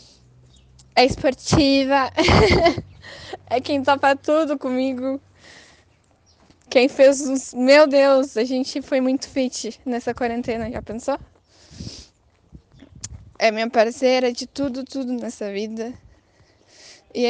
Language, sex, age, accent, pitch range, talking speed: Portuguese, female, 10-29, Brazilian, 225-275 Hz, 105 wpm